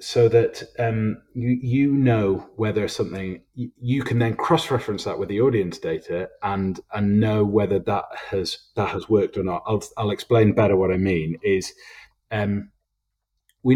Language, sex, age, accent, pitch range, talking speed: English, male, 30-49, British, 95-125 Hz, 170 wpm